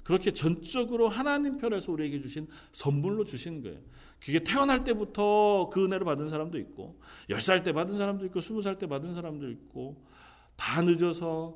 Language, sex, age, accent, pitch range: Korean, male, 40-59, native, 120-205 Hz